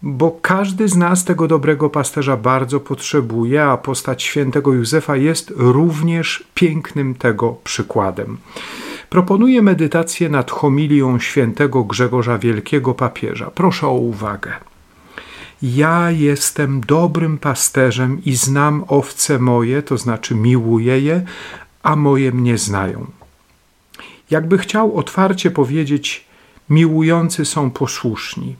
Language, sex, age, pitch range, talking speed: Polish, male, 50-69, 130-165 Hz, 110 wpm